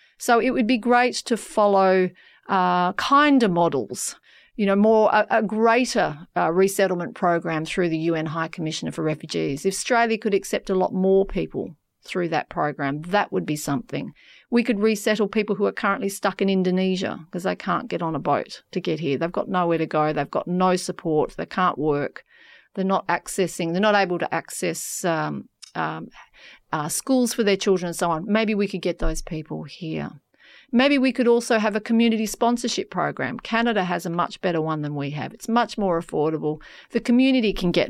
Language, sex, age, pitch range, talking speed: English, female, 40-59, 160-210 Hz, 195 wpm